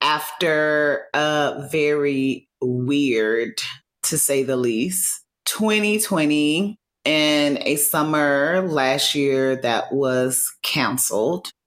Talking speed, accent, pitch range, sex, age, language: 85 wpm, American, 135-185 Hz, female, 30-49, English